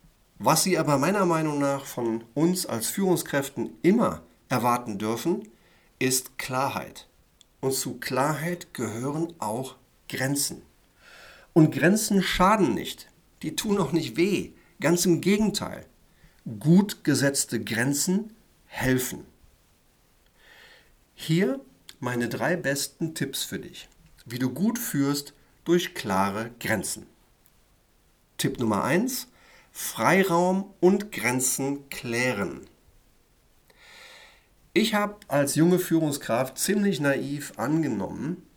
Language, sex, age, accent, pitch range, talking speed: German, male, 50-69, German, 125-175 Hz, 105 wpm